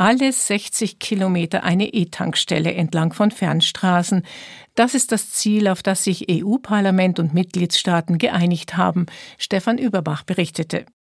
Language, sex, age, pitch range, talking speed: German, female, 50-69, 180-220 Hz, 125 wpm